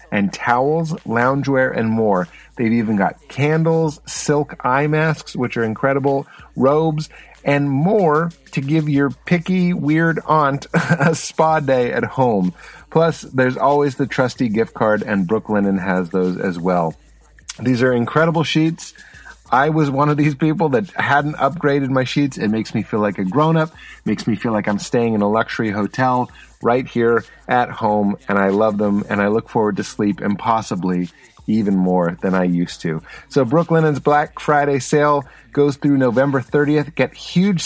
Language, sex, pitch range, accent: English, male, 110-155 Hz, American